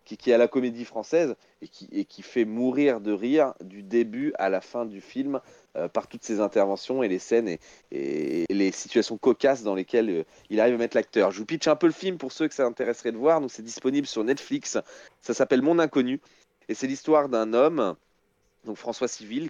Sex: male